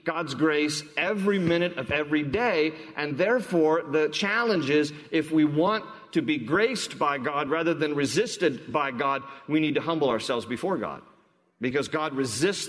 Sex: male